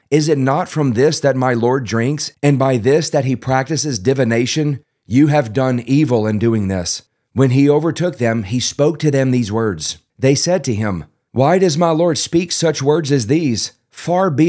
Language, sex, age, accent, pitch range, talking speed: English, male, 30-49, American, 115-150 Hz, 200 wpm